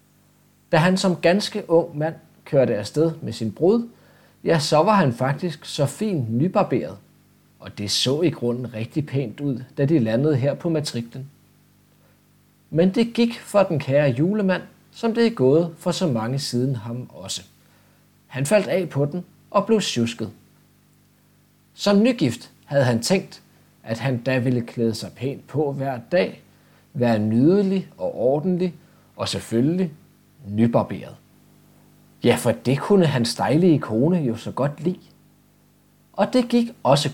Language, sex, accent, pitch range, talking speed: Danish, male, native, 125-180 Hz, 155 wpm